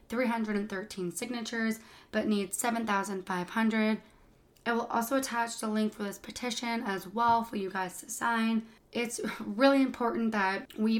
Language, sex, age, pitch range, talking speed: English, female, 20-39, 195-230 Hz, 140 wpm